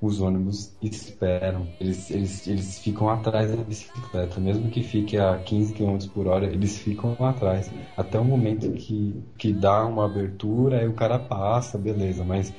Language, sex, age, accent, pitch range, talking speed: Portuguese, male, 20-39, Brazilian, 100-125 Hz, 165 wpm